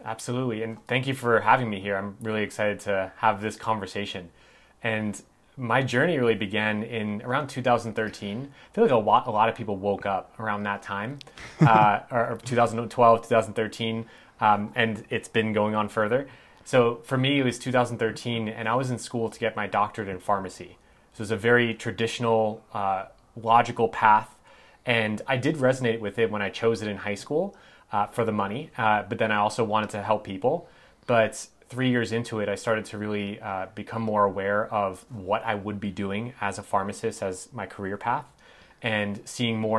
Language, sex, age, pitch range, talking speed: English, male, 30-49, 105-120 Hz, 195 wpm